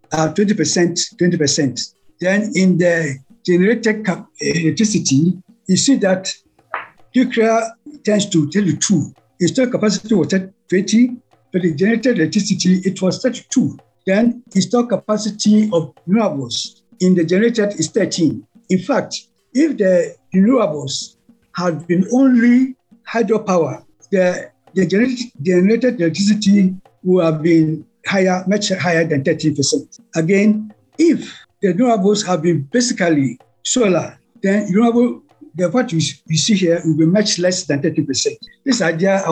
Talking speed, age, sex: 135 wpm, 60-79, male